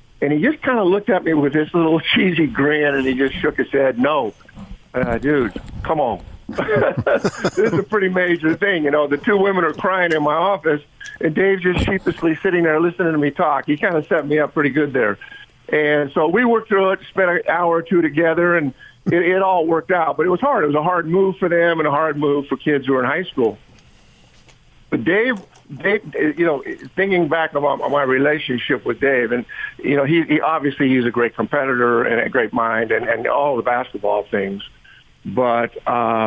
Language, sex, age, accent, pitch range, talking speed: English, male, 50-69, American, 130-175 Hz, 220 wpm